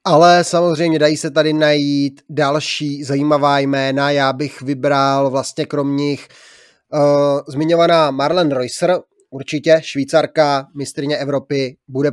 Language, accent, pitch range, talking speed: Czech, native, 140-155 Hz, 120 wpm